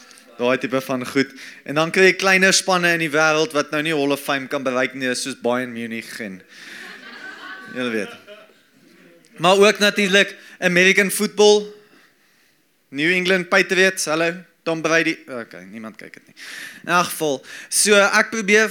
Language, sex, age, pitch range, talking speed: English, male, 20-39, 135-185 Hz, 155 wpm